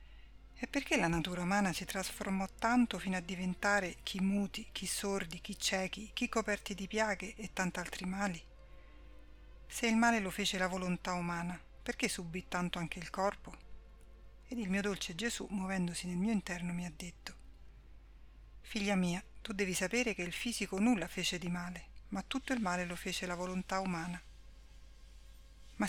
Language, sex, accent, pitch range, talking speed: Italian, female, native, 175-205 Hz, 170 wpm